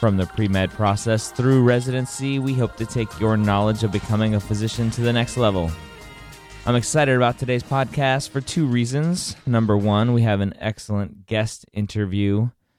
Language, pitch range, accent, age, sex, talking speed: English, 95-115 Hz, American, 20-39, male, 170 wpm